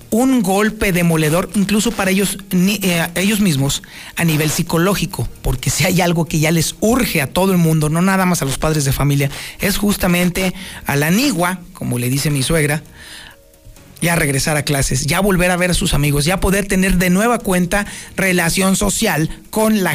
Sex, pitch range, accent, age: male, 155-205 Hz, Mexican, 40-59